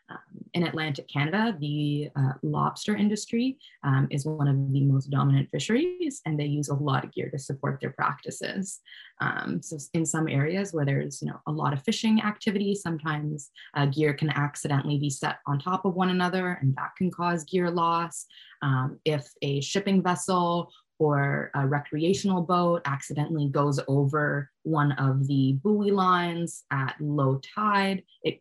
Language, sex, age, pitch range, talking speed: English, female, 20-39, 145-185 Hz, 165 wpm